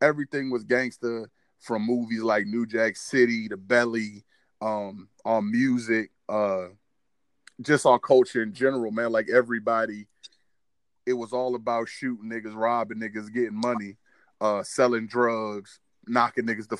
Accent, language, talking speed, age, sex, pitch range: American, English, 140 wpm, 20-39, male, 105-125 Hz